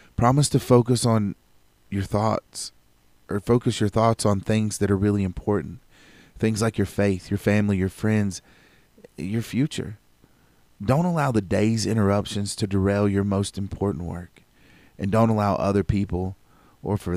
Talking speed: 155 wpm